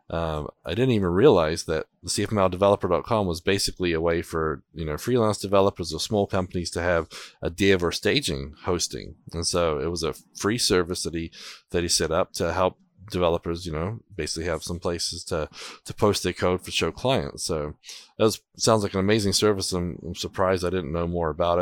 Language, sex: English, male